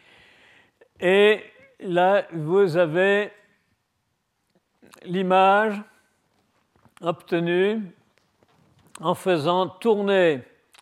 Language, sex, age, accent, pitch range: French, male, 50-69, French, 155-195 Hz